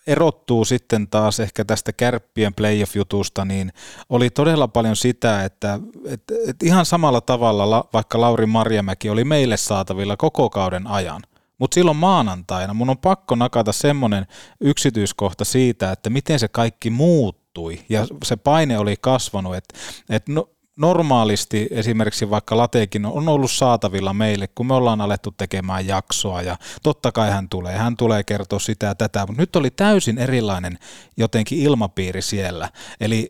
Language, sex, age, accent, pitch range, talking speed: Finnish, male, 30-49, native, 100-125 Hz, 140 wpm